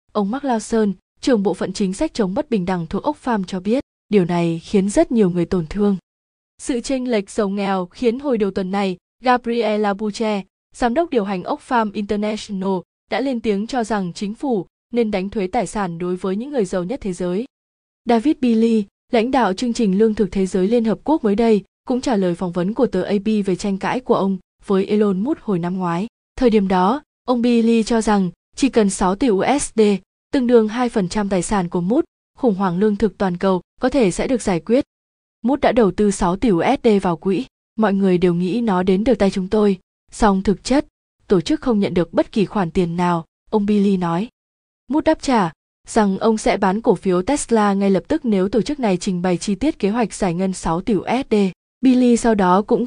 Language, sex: Vietnamese, female